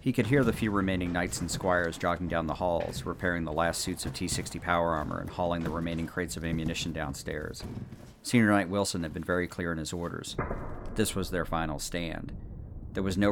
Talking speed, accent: 210 wpm, American